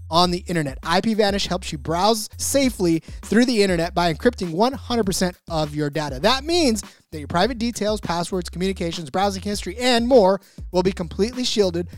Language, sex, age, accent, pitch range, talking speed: English, male, 30-49, American, 165-215 Hz, 170 wpm